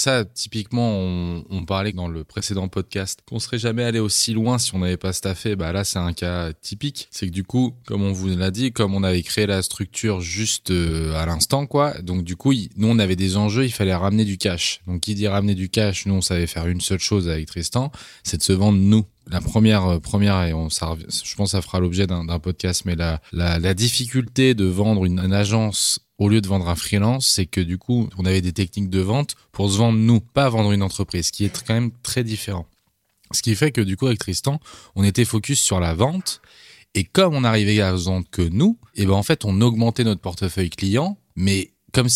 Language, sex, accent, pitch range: French, male, French, 95-115 Hz